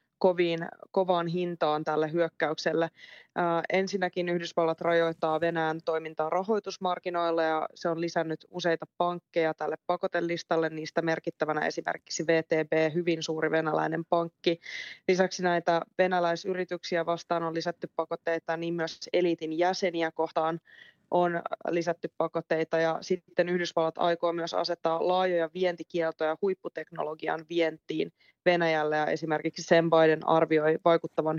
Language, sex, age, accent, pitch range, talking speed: Finnish, female, 20-39, native, 160-180 Hz, 115 wpm